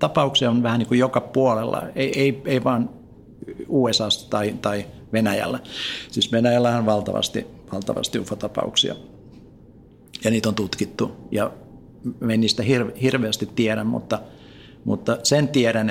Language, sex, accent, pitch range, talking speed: Finnish, male, native, 110-130 Hz, 125 wpm